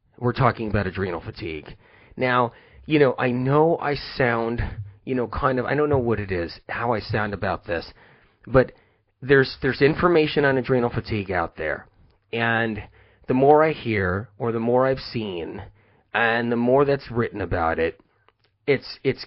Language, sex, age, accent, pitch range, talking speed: English, male, 40-59, American, 110-145 Hz, 170 wpm